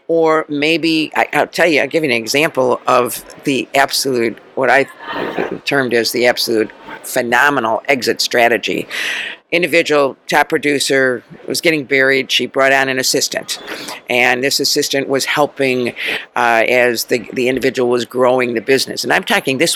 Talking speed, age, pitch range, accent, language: 160 wpm, 50-69, 130-165 Hz, American, English